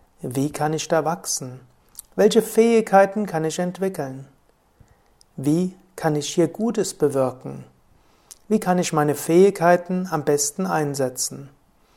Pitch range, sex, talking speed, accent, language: 145-190 Hz, male, 120 wpm, German, German